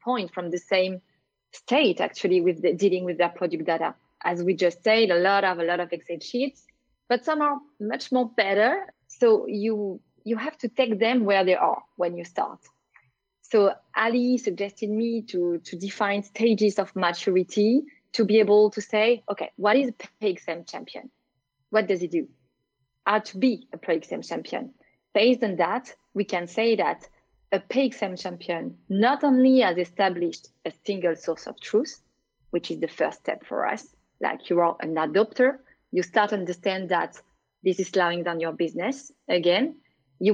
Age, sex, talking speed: 30-49, female, 175 wpm